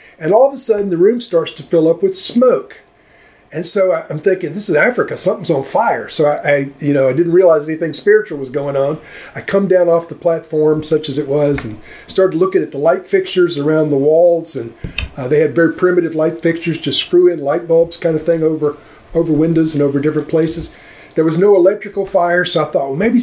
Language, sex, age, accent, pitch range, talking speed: English, male, 40-59, American, 150-190 Hz, 225 wpm